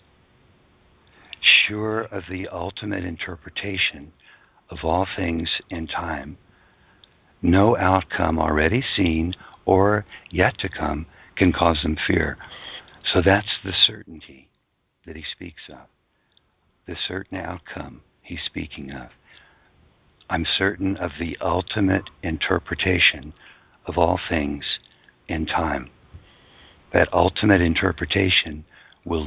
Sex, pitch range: male, 80-95 Hz